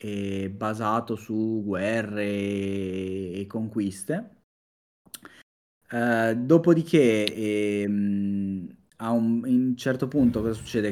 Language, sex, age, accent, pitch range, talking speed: Italian, male, 20-39, native, 95-120 Hz, 95 wpm